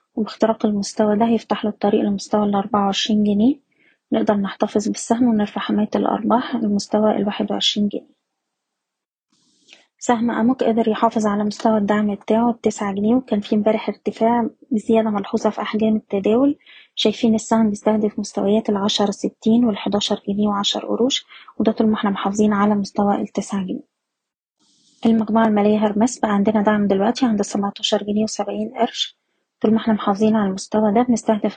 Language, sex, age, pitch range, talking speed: Arabic, female, 20-39, 205-230 Hz, 145 wpm